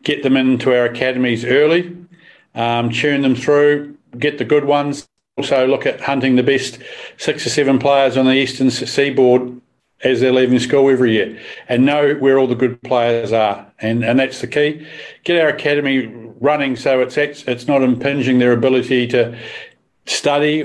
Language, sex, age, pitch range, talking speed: English, male, 50-69, 120-140 Hz, 175 wpm